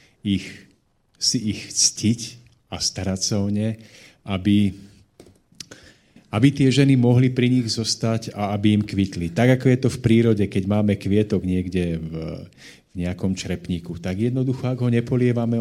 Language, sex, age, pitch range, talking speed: Slovak, male, 40-59, 95-115 Hz, 155 wpm